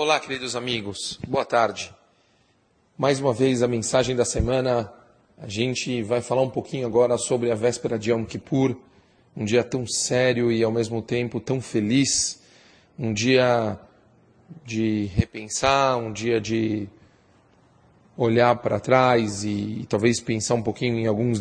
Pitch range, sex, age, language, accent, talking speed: 115-130 Hz, male, 40-59, English, Brazilian, 150 wpm